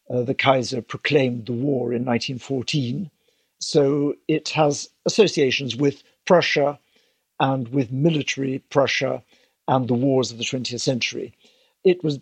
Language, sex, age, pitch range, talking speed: English, male, 60-79, 125-145 Hz, 135 wpm